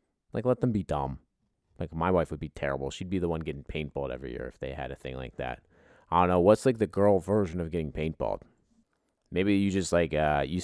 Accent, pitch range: American, 75-95 Hz